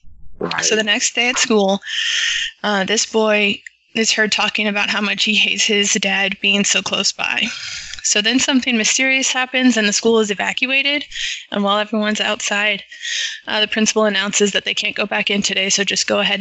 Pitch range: 200-225 Hz